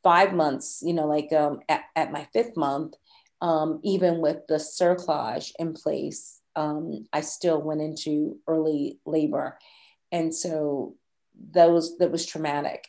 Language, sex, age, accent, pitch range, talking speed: English, female, 40-59, American, 155-165 Hz, 145 wpm